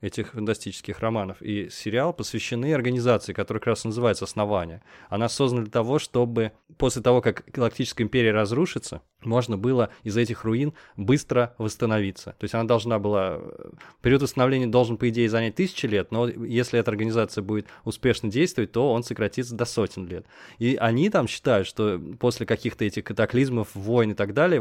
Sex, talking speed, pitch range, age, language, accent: male, 170 wpm, 110-130 Hz, 20-39, Russian, native